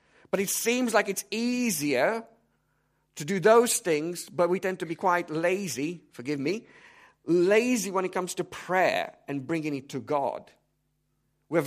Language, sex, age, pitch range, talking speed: English, male, 50-69, 145-195 Hz, 160 wpm